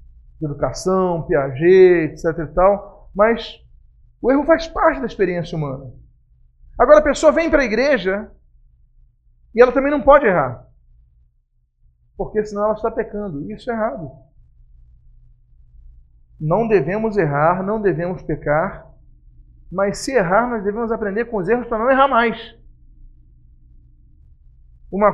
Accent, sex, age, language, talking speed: Brazilian, male, 40-59, Portuguese, 130 wpm